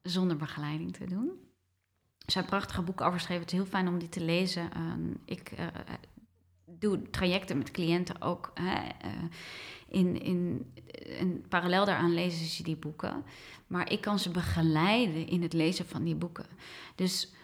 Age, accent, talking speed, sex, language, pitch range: 20-39, Dutch, 140 wpm, female, Dutch, 175-210 Hz